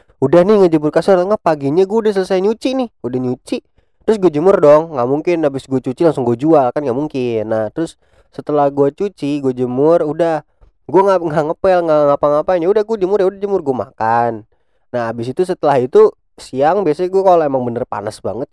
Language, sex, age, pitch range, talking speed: Indonesian, male, 20-39, 120-175 Hz, 200 wpm